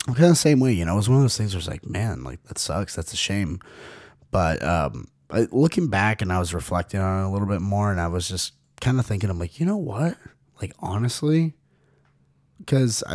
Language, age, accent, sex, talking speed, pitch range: English, 30-49, American, male, 240 wpm, 90-115 Hz